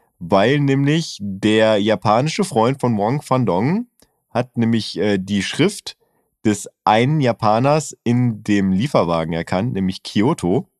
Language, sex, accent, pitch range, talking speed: German, male, German, 100-125 Hz, 120 wpm